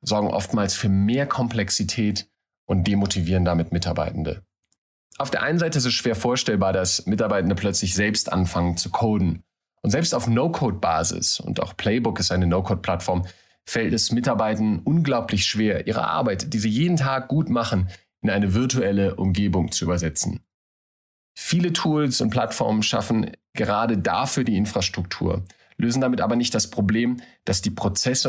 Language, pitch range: German, 95-120 Hz